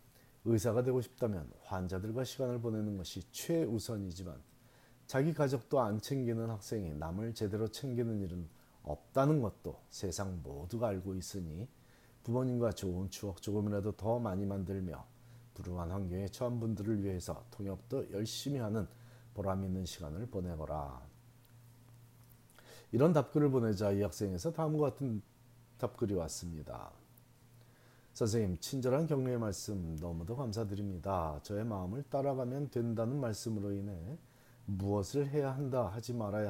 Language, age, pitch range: Korean, 40-59, 95-120 Hz